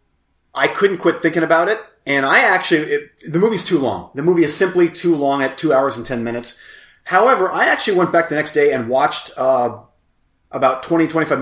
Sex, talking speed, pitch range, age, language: male, 210 wpm, 125-165 Hz, 30-49, English